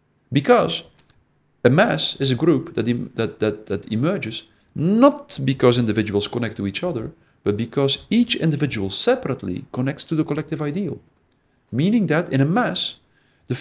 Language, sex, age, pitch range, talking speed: Romanian, male, 50-69, 120-185 Hz, 155 wpm